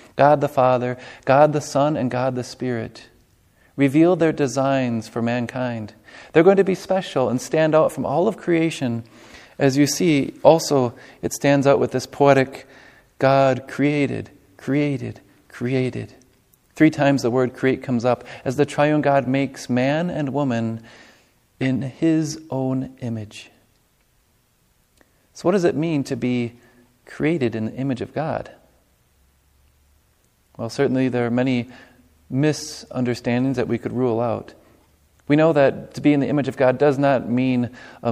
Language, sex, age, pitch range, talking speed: English, male, 40-59, 120-145 Hz, 155 wpm